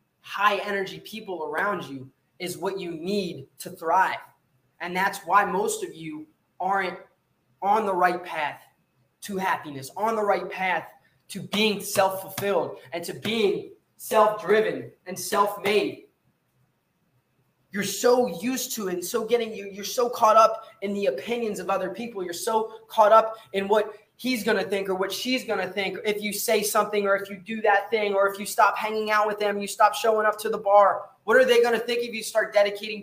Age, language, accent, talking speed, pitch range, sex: 20-39, English, American, 200 wpm, 185-220 Hz, male